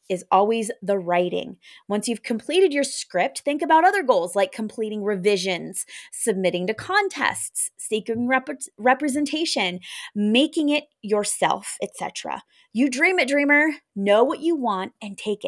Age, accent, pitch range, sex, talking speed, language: 20-39, American, 205-285 Hz, female, 135 wpm, English